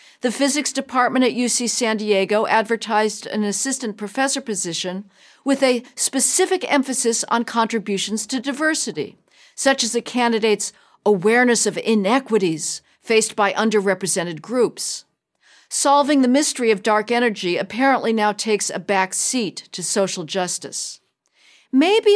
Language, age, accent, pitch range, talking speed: English, 50-69, American, 200-260 Hz, 125 wpm